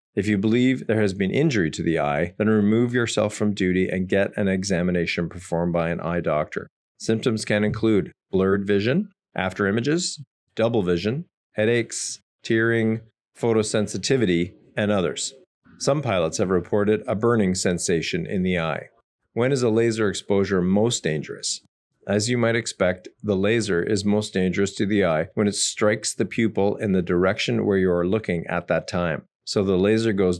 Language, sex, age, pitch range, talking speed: English, male, 40-59, 95-110 Hz, 170 wpm